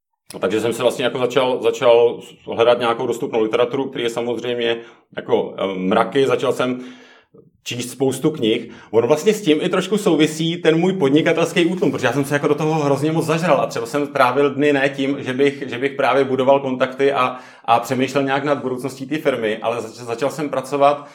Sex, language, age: male, Czech, 30-49